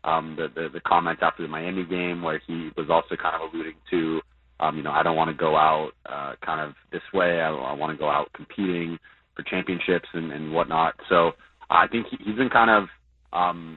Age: 30-49